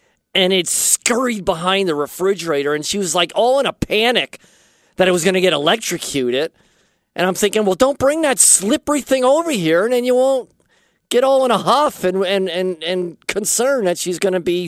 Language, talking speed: English, 210 wpm